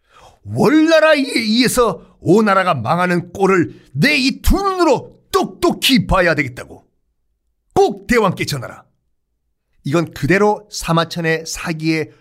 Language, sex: Korean, male